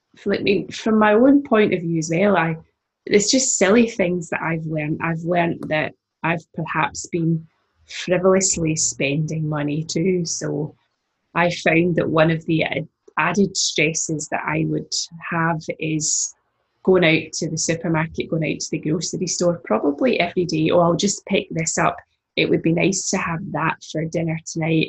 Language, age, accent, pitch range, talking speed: English, 20-39, British, 160-185 Hz, 175 wpm